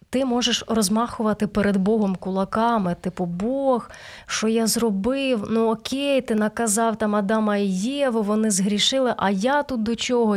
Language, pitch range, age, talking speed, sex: Ukrainian, 195-245 Hz, 20-39, 150 wpm, female